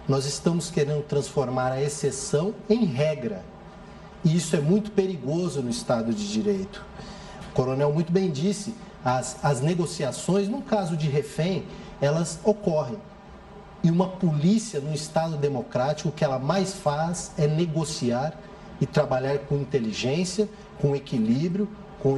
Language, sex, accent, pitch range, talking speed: Portuguese, male, Brazilian, 145-200 Hz, 140 wpm